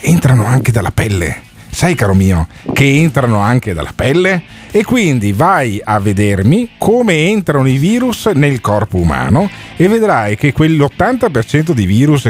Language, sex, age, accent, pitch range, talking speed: Italian, male, 50-69, native, 105-150 Hz, 145 wpm